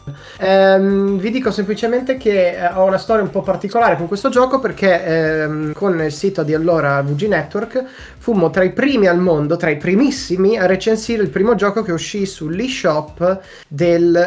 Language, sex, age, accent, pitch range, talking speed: Italian, male, 20-39, native, 155-205 Hz, 175 wpm